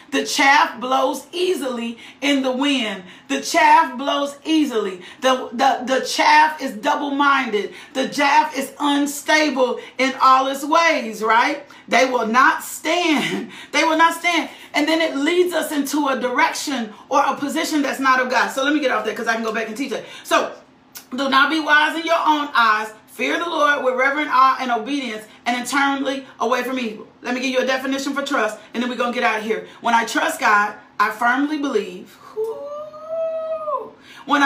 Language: English